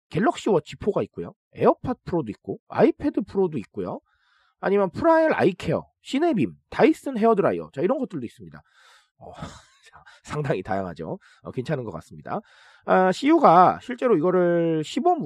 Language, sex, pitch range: Korean, male, 150-240 Hz